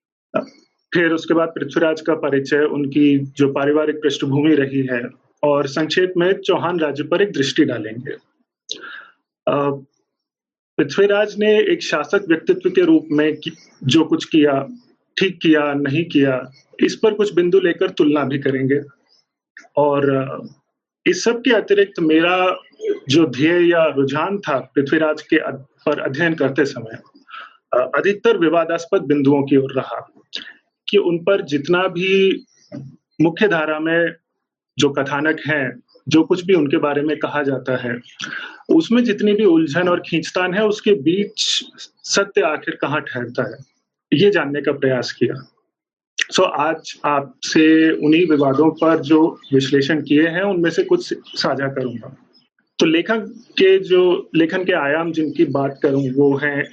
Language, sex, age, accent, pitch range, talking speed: English, male, 30-49, Indian, 145-195 Hz, 115 wpm